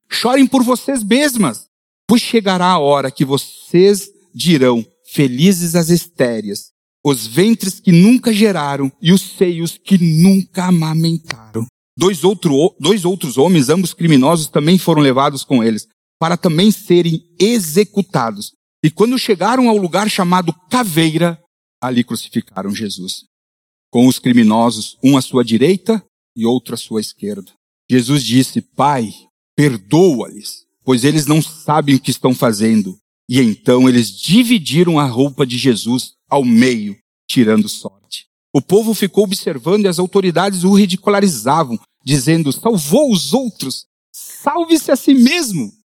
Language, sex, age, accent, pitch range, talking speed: Portuguese, male, 50-69, Brazilian, 125-195 Hz, 135 wpm